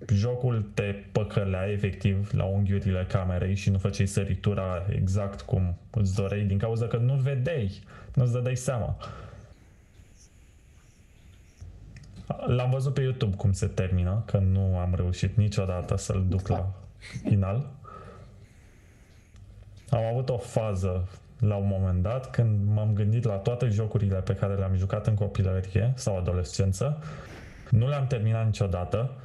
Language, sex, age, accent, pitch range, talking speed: Romanian, male, 20-39, native, 95-120 Hz, 135 wpm